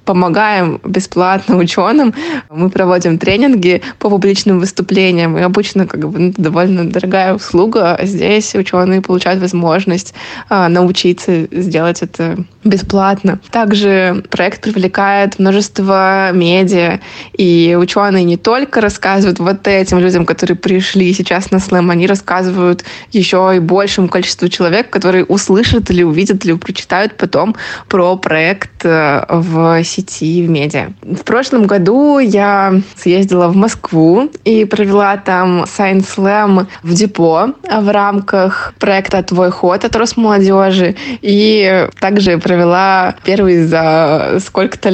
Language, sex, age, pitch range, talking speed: Russian, female, 20-39, 175-200 Hz, 120 wpm